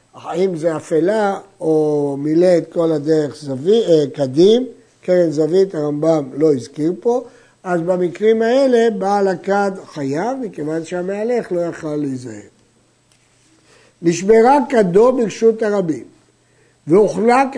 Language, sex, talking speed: Hebrew, male, 105 wpm